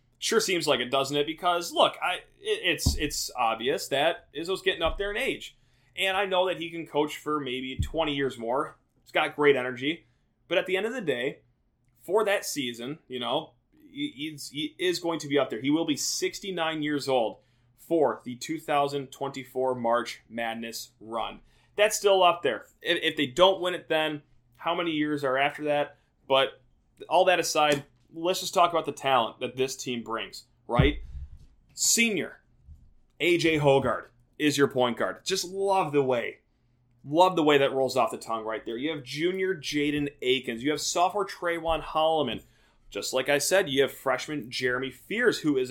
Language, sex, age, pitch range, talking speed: English, male, 30-49, 130-175 Hz, 180 wpm